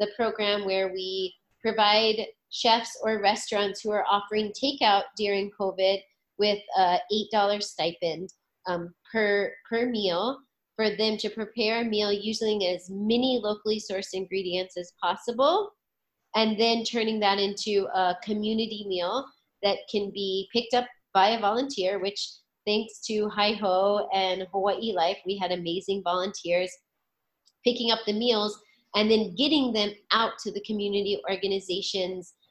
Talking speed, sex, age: 140 wpm, female, 30-49